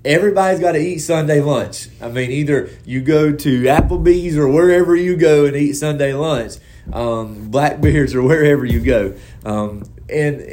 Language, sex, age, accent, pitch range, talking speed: English, male, 30-49, American, 120-160 Hz, 165 wpm